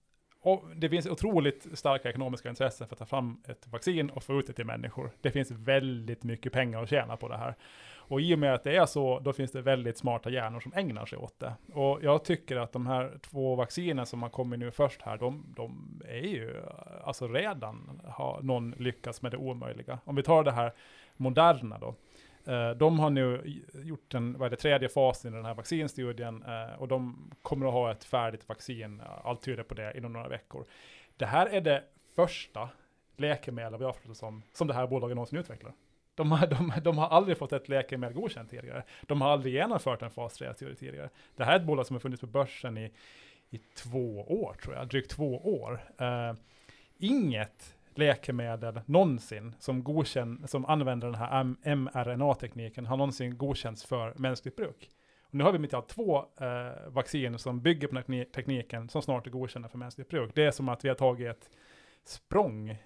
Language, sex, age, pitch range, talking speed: Swedish, male, 30-49, 120-140 Hz, 200 wpm